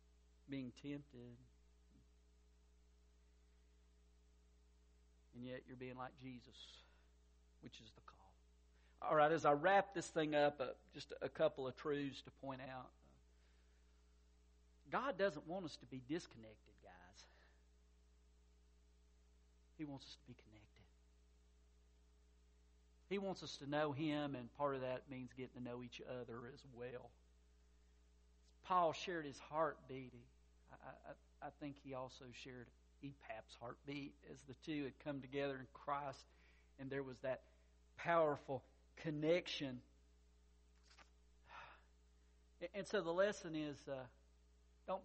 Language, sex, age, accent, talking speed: English, male, 50-69, American, 125 wpm